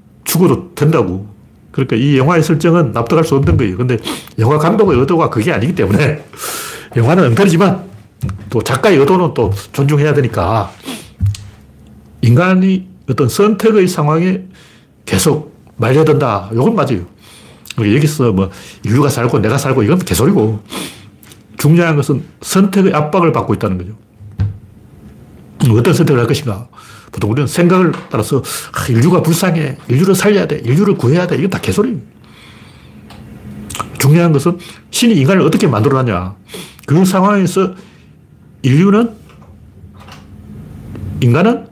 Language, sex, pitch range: Korean, male, 110-170 Hz